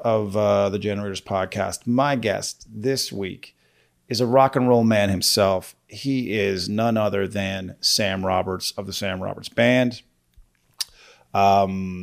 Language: English